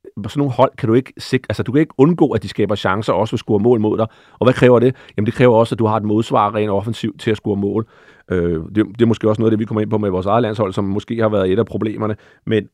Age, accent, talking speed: 40-59, native, 310 wpm